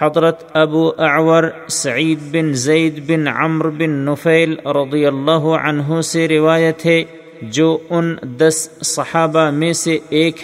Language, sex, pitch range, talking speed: Urdu, male, 150-160 Hz, 130 wpm